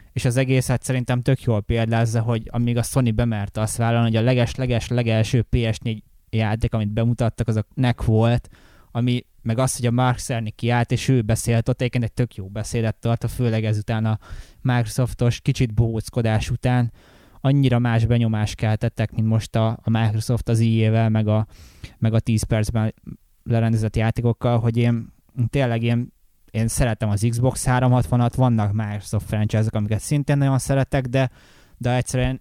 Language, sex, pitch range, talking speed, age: Hungarian, male, 110-125 Hz, 165 wpm, 20-39